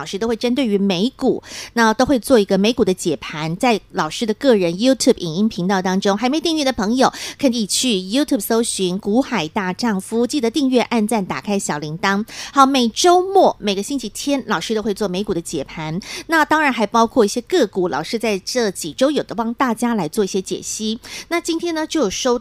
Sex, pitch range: female, 200-270 Hz